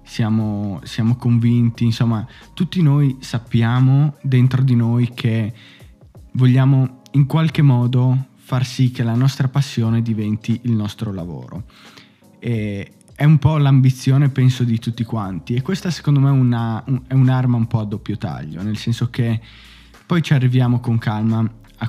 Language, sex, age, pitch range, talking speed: Italian, male, 20-39, 110-130 Hz, 145 wpm